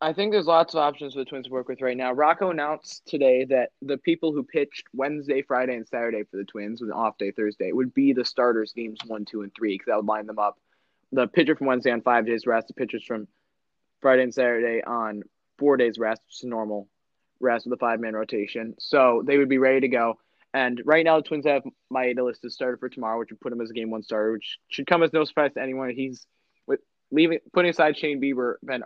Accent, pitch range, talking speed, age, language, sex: American, 115-145 Hz, 245 wpm, 20-39, English, male